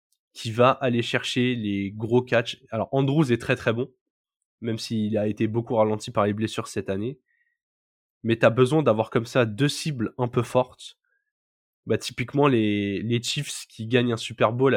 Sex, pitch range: male, 115-140 Hz